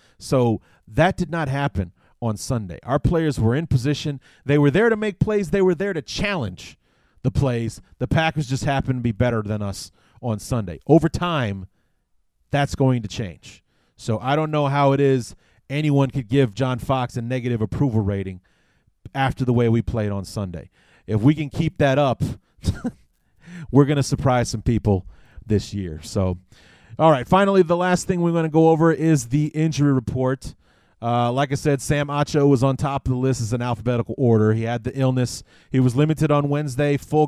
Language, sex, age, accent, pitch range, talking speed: English, male, 30-49, American, 115-150 Hz, 195 wpm